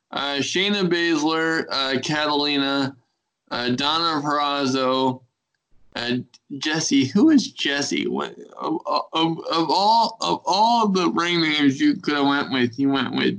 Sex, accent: male, American